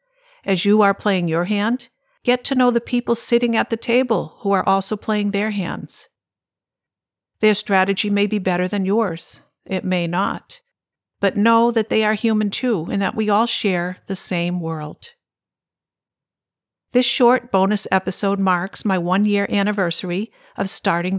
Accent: American